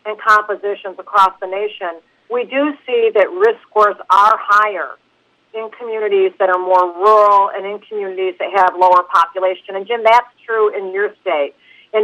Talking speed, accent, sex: 170 wpm, American, female